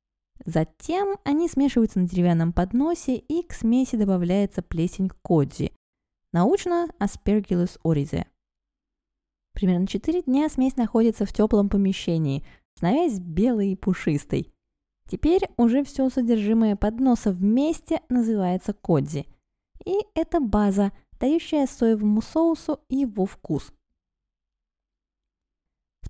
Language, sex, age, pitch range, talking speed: Russian, female, 20-39, 180-265 Hz, 105 wpm